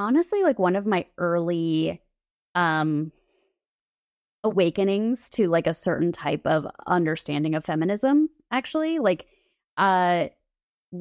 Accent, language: American, English